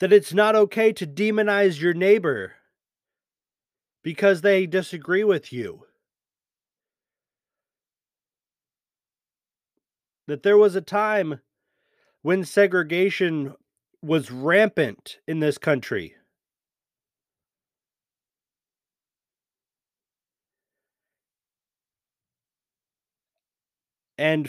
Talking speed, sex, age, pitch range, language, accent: 65 wpm, male, 40-59, 150-200 Hz, English, American